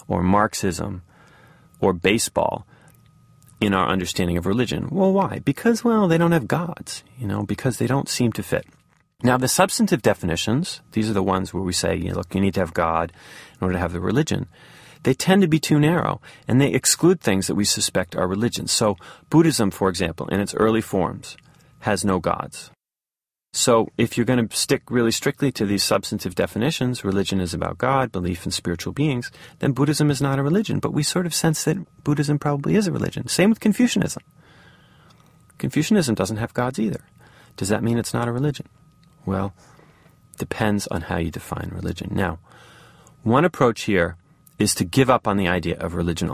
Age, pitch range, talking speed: 30-49, 95-150 Hz, 190 wpm